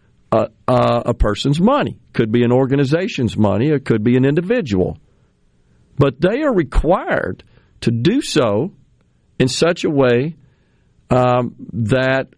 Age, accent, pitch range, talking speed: 50-69, American, 115-145 Hz, 135 wpm